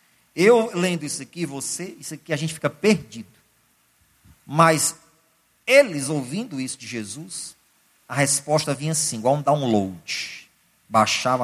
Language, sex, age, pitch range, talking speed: Portuguese, male, 40-59, 135-180 Hz, 130 wpm